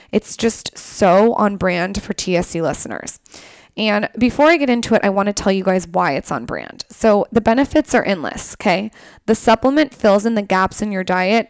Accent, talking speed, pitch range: American, 205 wpm, 185-225 Hz